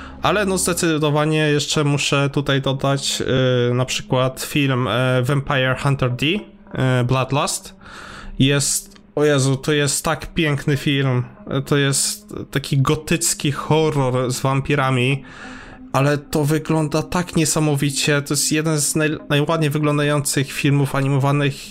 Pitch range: 130-155 Hz